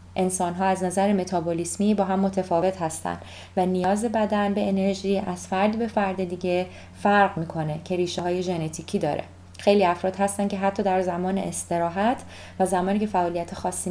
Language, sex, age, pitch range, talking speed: Persian, female, 20-39, 170-200 Hz, 165 wpm